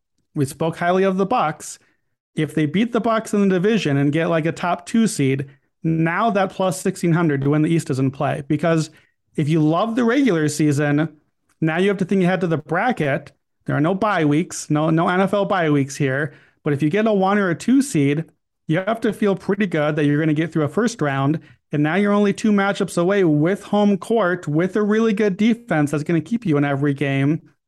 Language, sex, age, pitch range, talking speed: English, male, 40-59, 150-190 Hz, 230 wpm